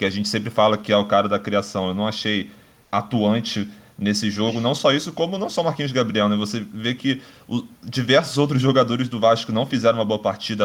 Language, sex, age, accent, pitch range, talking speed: Portuguese, male, 20-39, Brazilian, 105-120 Hz, 225 wpm